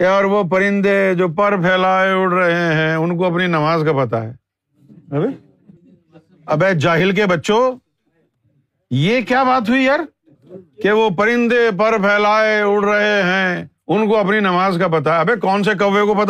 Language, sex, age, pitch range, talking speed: Urdu, male, 50-69, 180-235 Hz, 160 wpm